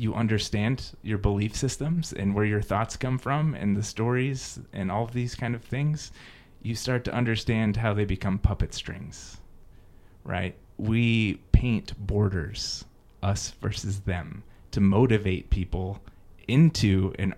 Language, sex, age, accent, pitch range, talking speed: English, male, 30-49, American, 100-120 Hz, 145 wpm